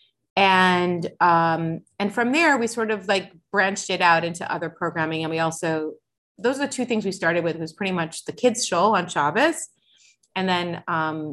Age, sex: 30-49, female